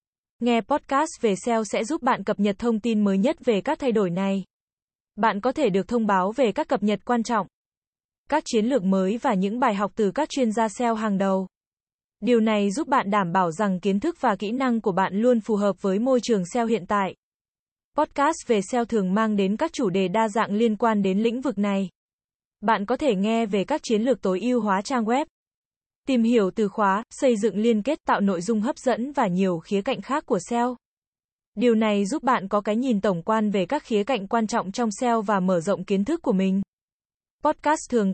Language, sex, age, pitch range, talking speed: Vietnamese, female, 20-39, 200-245 Hz, 225 wpm